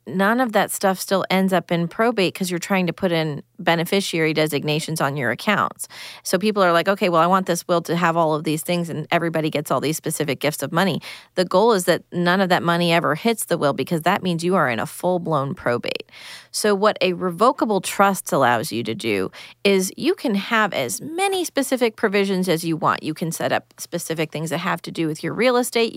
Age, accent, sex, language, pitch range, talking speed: 30-49, American, female, English, 155-195 Hz, 235 wpm